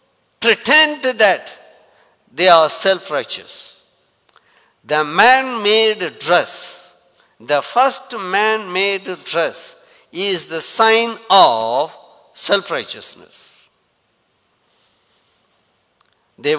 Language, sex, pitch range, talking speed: English, male, 165-240 Hz, 80 wpm